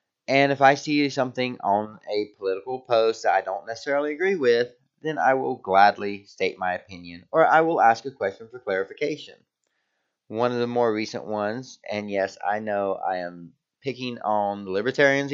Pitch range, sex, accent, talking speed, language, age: 100-135 Hz, male, American, 180 wpm, English, 30-49